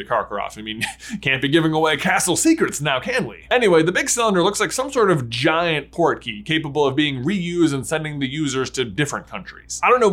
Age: 20-39